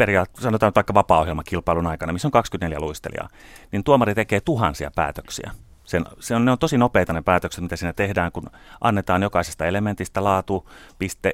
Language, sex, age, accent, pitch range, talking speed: Finnish, male, 30-49, native, 85-120 Hz, 165 wpm